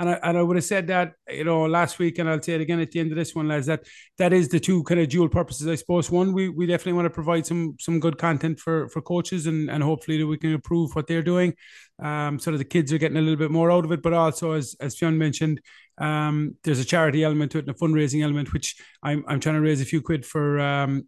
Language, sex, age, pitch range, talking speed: English, male, 30-49, 150-175 Hz, 290 wpm